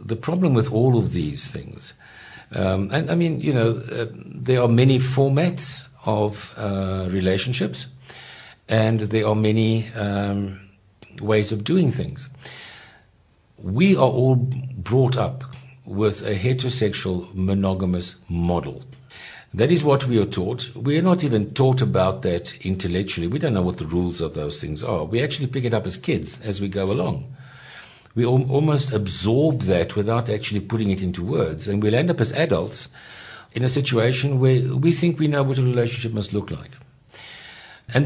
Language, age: English, 60-79